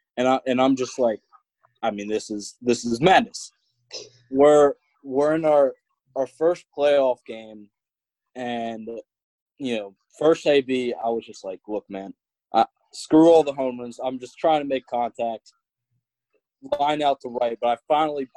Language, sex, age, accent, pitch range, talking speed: English, male, 20-39, American, 120-140 Hz, 170 wpm